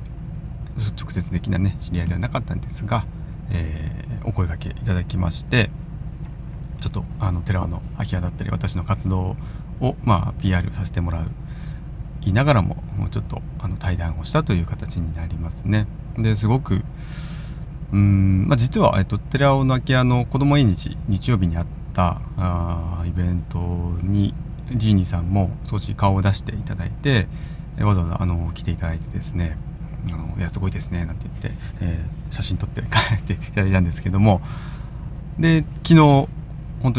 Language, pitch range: Japanese, 90-130 Hz